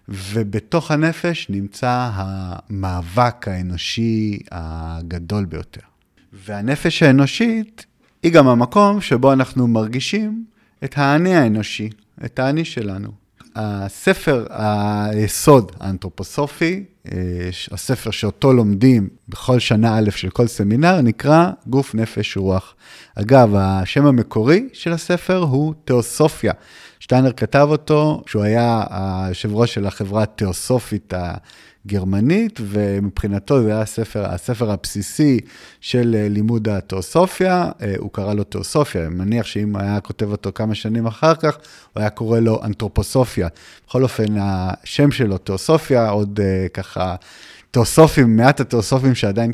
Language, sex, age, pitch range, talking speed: Hebrew, male, 30-49, 100-135 Hz, 110 wpm